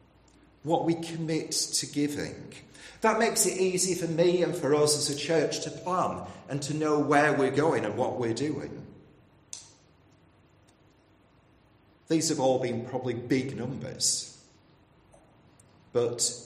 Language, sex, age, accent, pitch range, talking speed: English, male, 40-59, British, 100-145 Hz, 135 wpm